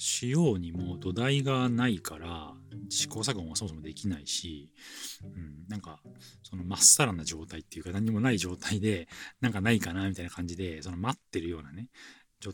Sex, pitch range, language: male, 85-125 Hz, Japanese